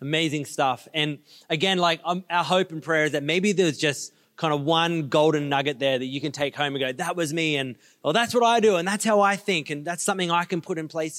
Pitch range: 145-175 Hz